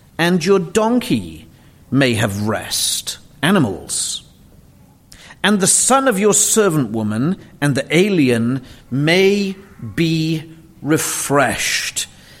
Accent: British